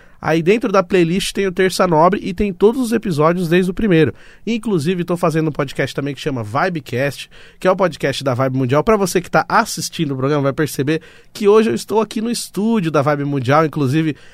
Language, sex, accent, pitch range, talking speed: Portuguese, male, Brazilian, 145-190 Hz, 220 wpm